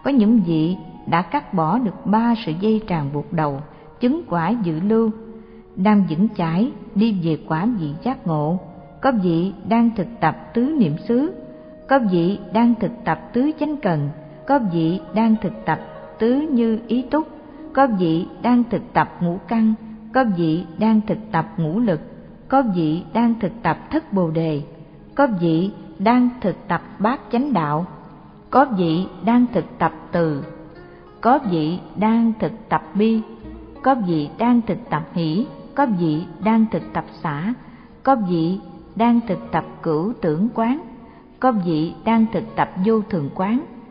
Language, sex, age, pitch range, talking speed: Vietnamese, female, 60-79, 165-235 Hz, 165 wpm